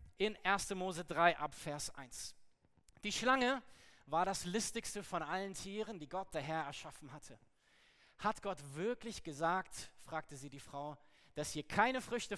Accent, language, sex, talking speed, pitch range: German, German, male, 160 wpm, 155-215 Hz